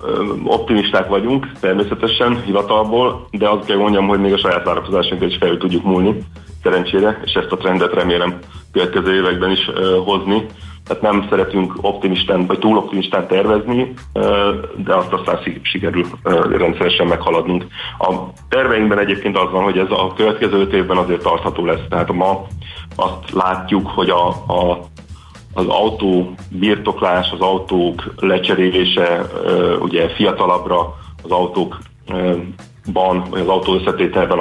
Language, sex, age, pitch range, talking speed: Hungarian, male, 40-59, 90-100 Hz, 135 wpm